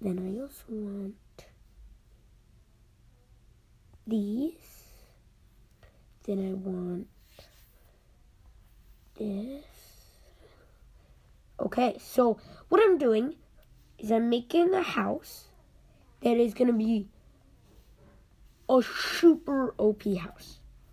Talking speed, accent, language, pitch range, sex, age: 80 wpm, American, English, 195-235 Hz, female, 20-39